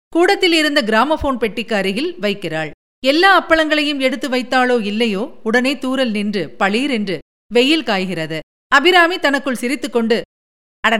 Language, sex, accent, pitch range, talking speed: Tamil, female, native, 215-270 Hz, 120 wpm